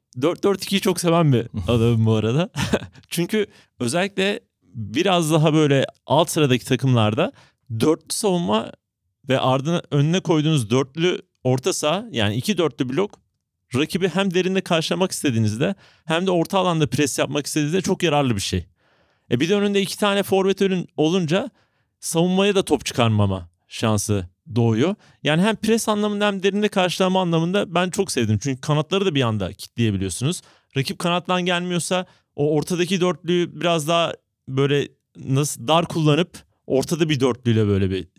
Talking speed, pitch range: 145 wpm, 115-185 Hz